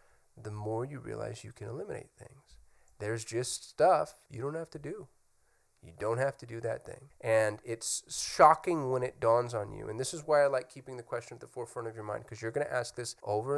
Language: English